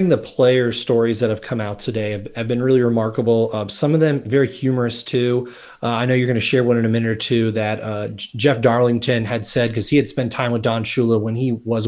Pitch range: 115-145 Hz